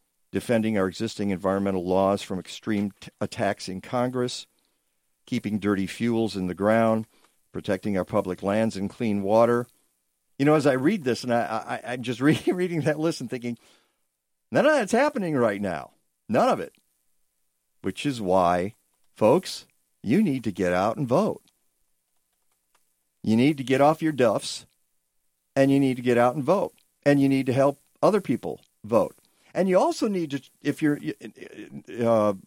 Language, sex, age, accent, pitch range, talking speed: English, male, 50-69, American, 95-135 Hz, 165 wpm